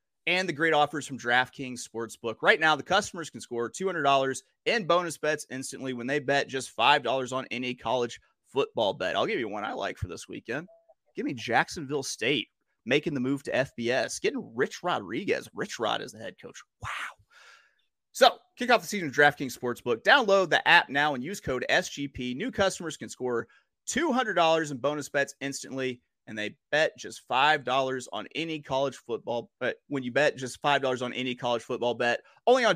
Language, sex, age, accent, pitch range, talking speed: English, male, 30-49, American, 130-170 Hz, 190 wpm